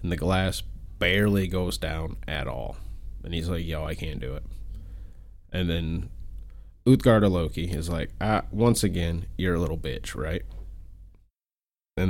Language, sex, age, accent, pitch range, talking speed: English, male, 20-39, American, 85-95 Hz, 155 wpm